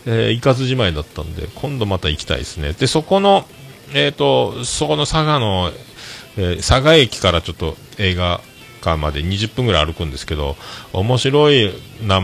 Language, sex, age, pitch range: Japanese, male, 40-59, 90-140 Hz